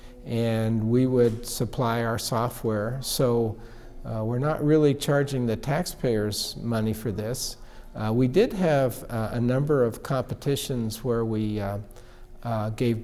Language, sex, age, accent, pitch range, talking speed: English, male, 50-69, American, 110-135 Hz, 145 wpm